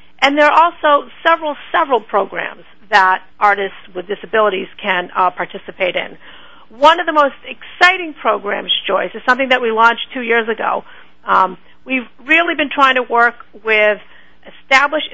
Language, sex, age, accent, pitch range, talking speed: English, female, 50-69, American, 210-275 Hz, 155 wpm